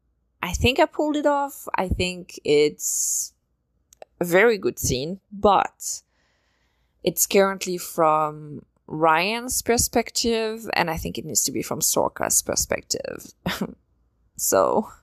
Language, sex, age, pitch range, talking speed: English, female, 20-39, 155-195 Hz, 120 wpm